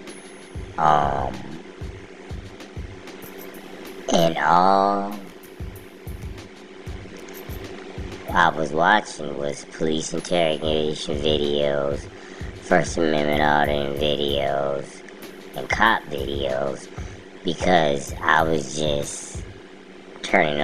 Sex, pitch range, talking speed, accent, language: male, 75-95 Hz, 65 wpm, American, English